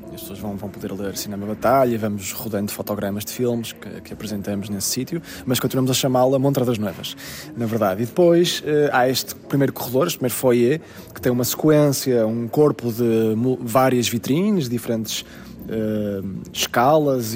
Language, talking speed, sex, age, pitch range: Portuguese, 175 wpm, male, 20-39, 110-135 Hz